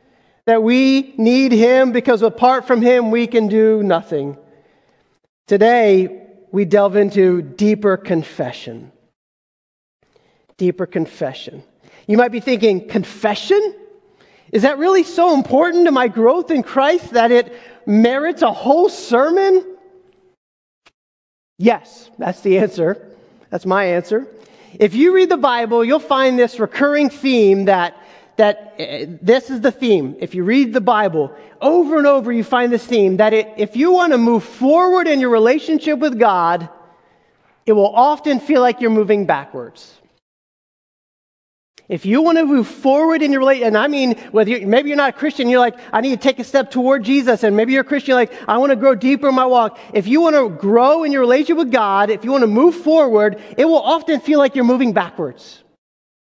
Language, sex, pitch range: English, male, 210-280 Hz